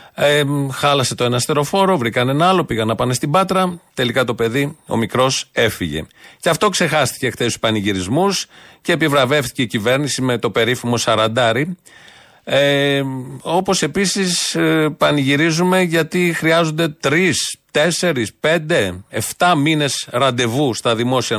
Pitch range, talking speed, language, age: 120-165 Hz, 125 wpm, Greek, 40-59